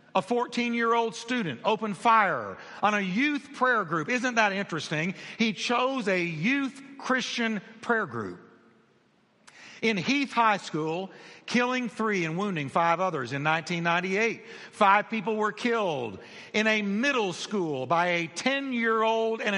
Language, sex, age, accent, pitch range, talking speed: English, male, 60-79, American, 185-225 Hz, 135 wpm